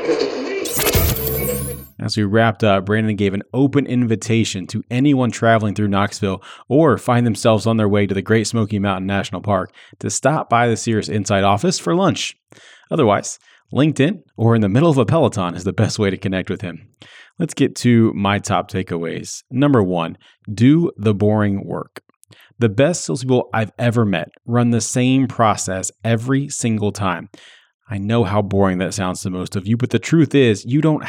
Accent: American